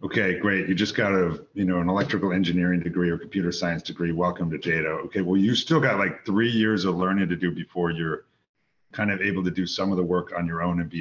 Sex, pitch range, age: male, 90-110 Hz, 40-59